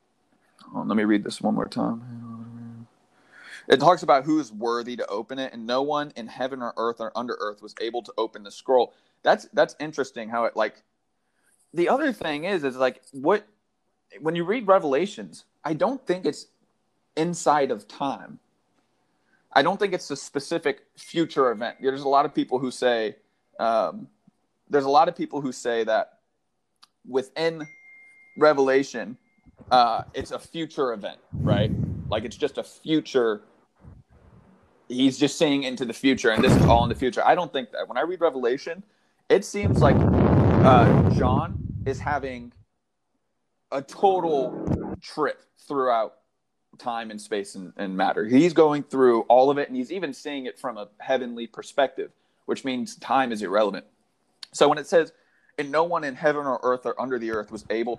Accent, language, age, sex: American, English, 30-49, male